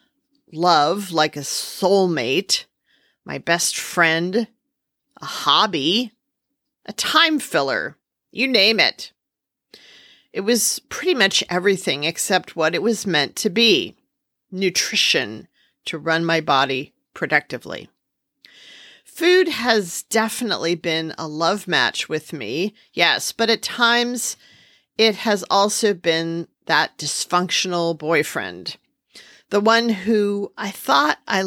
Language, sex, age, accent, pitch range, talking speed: English, female, 40-59, American, 170-230 Hz, 115 wpm